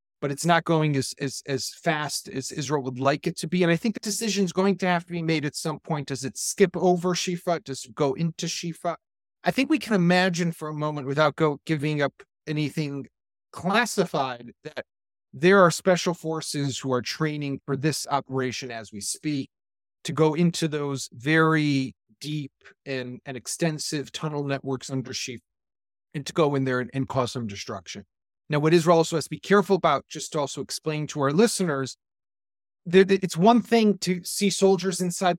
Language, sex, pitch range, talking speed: English, male, 140-180 Hz, 195 wpm